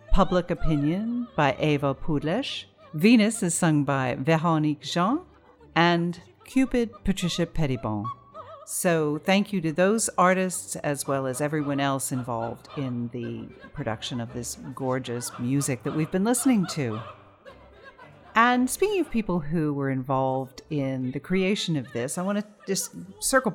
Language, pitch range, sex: English, 130-180 Hz, female